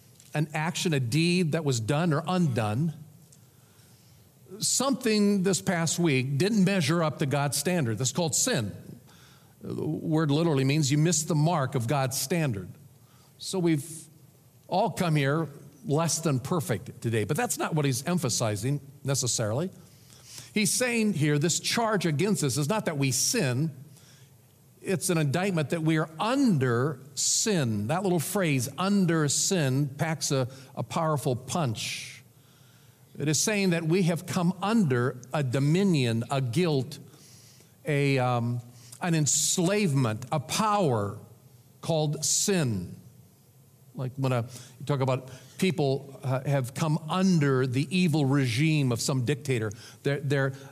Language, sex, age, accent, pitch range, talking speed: English, male, 50-69, American, 130-170 Hz, 140 wpm